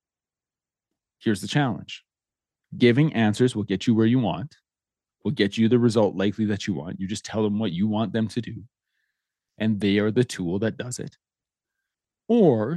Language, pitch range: English, 105-145 Hz